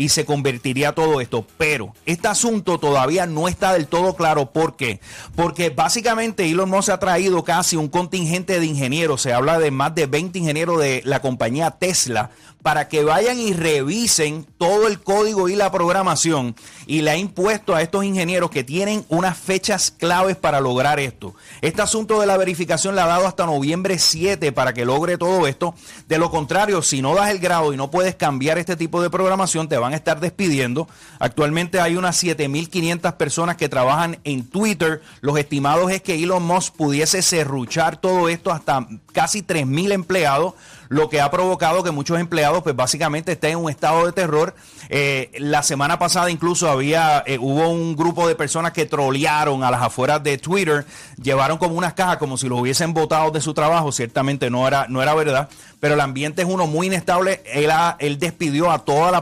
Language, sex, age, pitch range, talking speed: English, male, 30-49, 145-180 Hz, 190 wpm